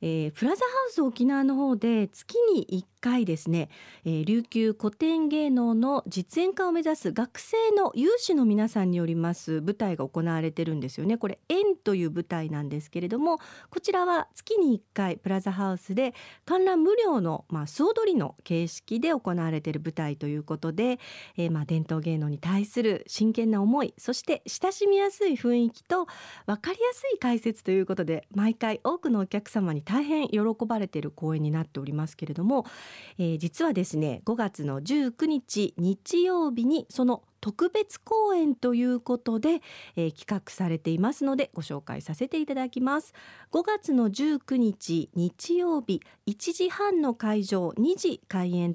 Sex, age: female, 40-59